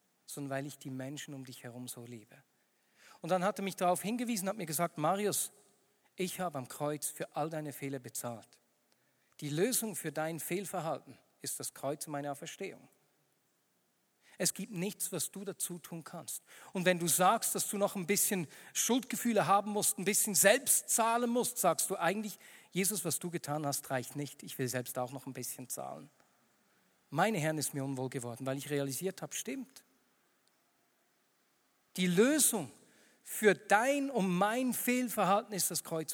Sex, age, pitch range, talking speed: male, 50-69, 150-230 Hz, 175 wpm